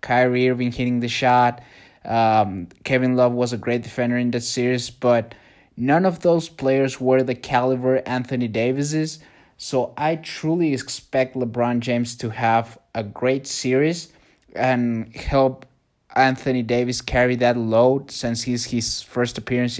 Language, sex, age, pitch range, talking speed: English, male, 20-39, 120-135 Hz, 150 wpm